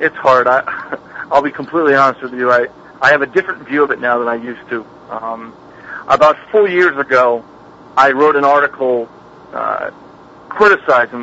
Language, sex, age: English, male, 40-59